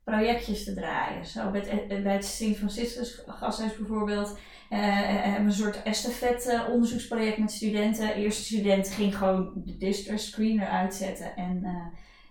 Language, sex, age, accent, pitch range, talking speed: Dutch, female, 20-39, Dutch, 195-225 Hz, 145 wpm